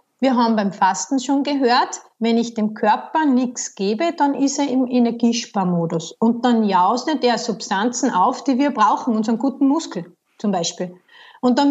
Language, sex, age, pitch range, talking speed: German, female, 30-49, 215-285 Hz, 170 wpm